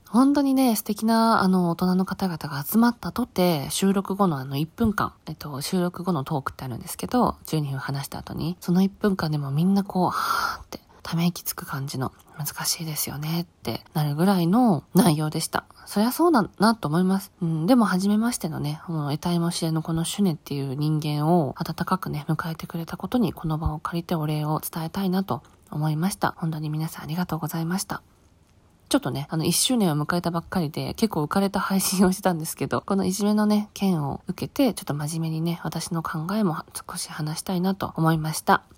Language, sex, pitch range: Japanese, female, 155-215 Hz